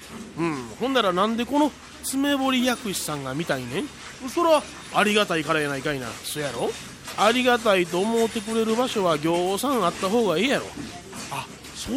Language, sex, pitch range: Japanese, male, 170-235 Hz